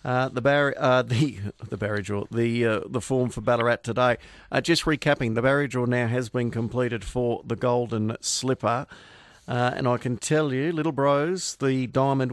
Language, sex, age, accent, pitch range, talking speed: English, male, 50-69, Australian, 120-145 Hz, 190 wpm